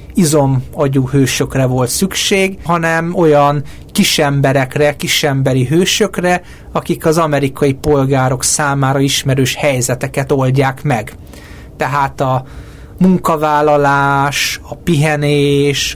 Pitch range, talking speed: 135-165 Hz, 90 wpm